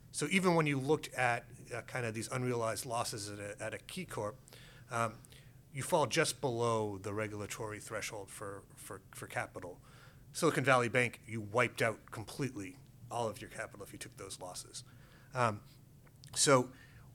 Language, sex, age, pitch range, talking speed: English, male, 30-49, 115-135 Hz, 170 wpm